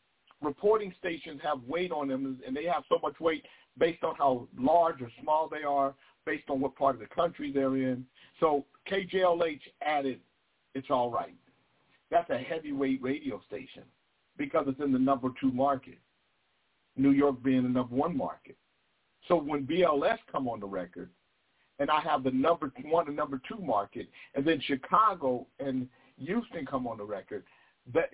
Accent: American